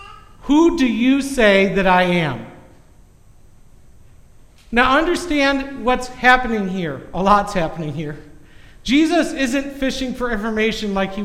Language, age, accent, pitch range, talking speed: English, 50-69, American, 190-270 Hz, 125 wpm